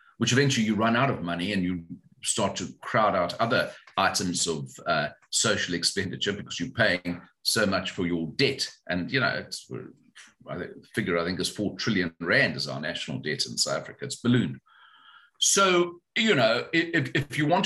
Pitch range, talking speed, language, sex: 120-155 Hz, 185 wpm, English, male